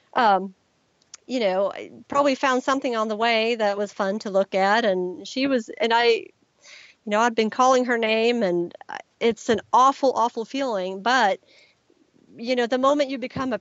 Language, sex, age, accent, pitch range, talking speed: English, female, 40-59, American, 195-240 Hz, 185 wpm